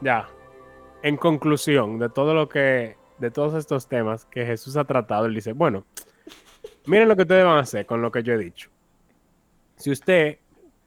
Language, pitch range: Spanish, 110-150 Hz